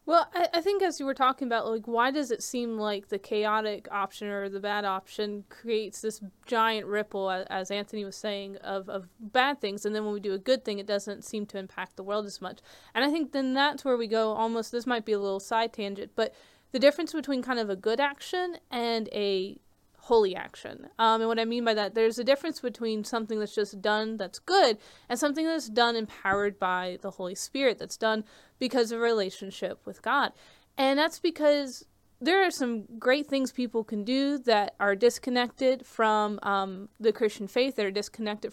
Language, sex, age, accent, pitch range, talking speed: English, female, 20-39, American, 210-270 Hz, 210 wpm